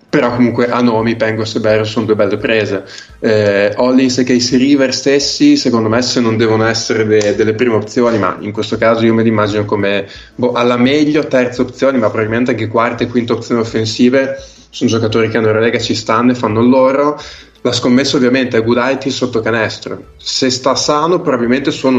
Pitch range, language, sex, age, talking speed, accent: 110-125 Hz, Italian, male, 20-39, 205 wpm, native